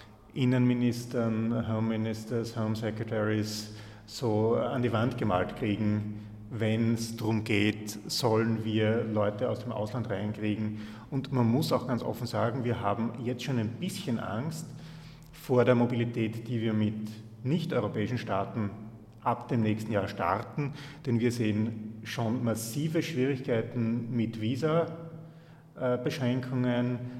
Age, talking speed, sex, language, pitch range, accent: 40-59, 120 wpm, male, English, 110-135 Hz, German